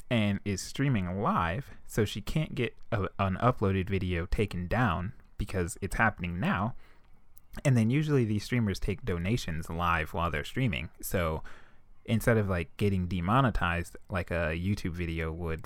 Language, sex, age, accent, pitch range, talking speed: English, male, 20-39, American, 85-105 Hz, 150 wpm